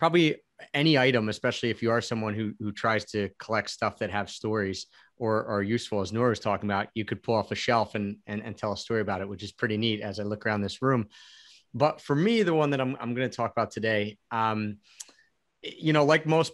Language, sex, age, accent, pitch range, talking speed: English, male, 30-49, American, 105-130 Hz, 245 wpm